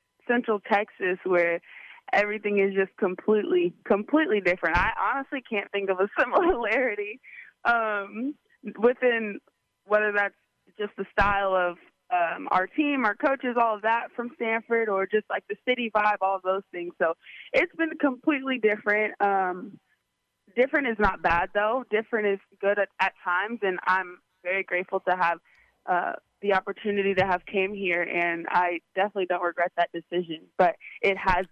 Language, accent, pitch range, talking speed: English, American, 175-215 Hz, 160 wpm